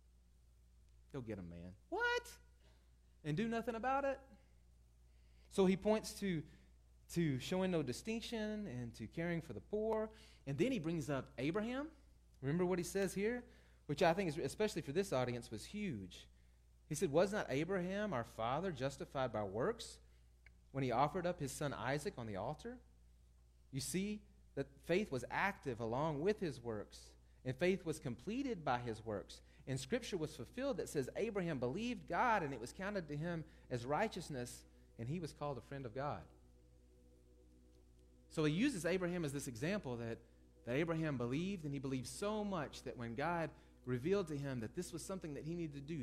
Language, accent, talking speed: English, American, 180 wpm